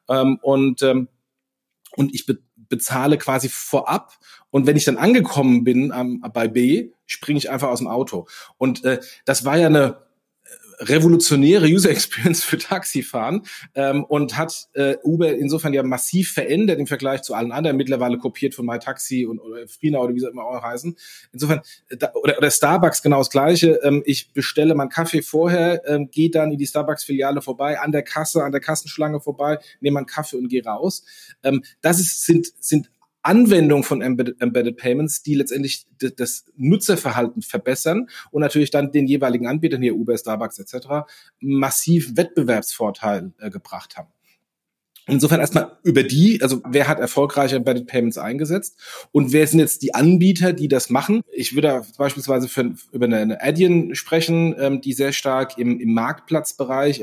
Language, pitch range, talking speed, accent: German, 130-160 Hz, 175 wpm, German